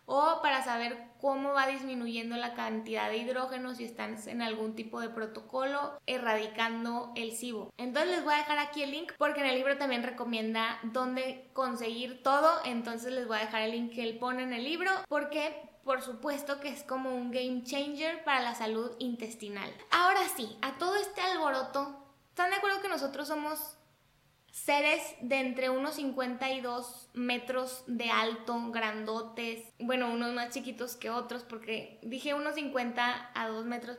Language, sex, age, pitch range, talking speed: Spanish, female, 20-39, 235-285 Hz, 170 wpm